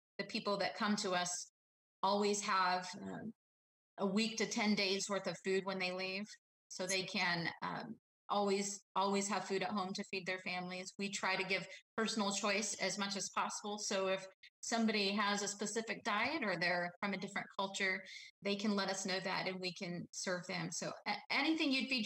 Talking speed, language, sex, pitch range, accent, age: 195 wpm, English, female, 180-205 Hz, American, 30-49